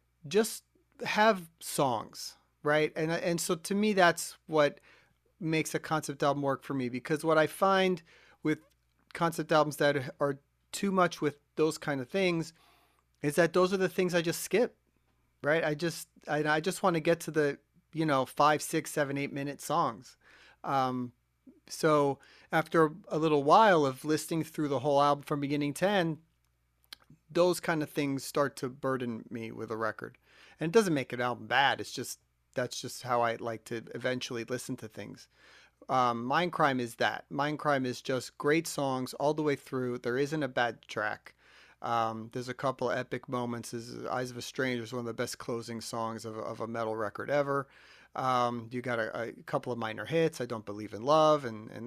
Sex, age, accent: male, 30-49, American